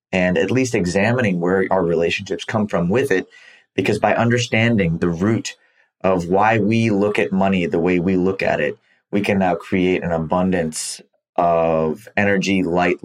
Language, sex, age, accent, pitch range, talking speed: English, male, 30-49, American, 90-115 Hz, 170 wpm